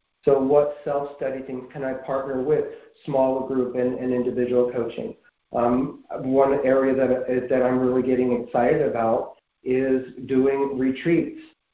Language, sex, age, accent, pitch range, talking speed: English, male, 40-59, American, 125-155 Hz, 140 wpm